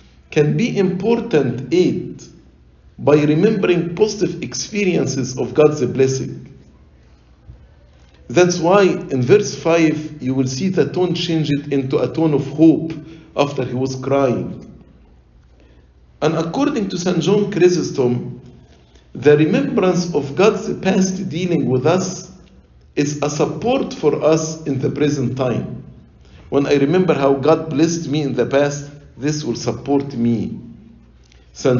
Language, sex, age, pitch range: English, male, 50-69, 125-175 Hz